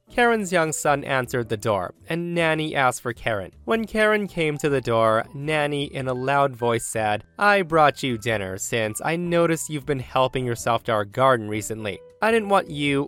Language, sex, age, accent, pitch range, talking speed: English, male, 20-39, American, 115-160 Hz, 195 wpm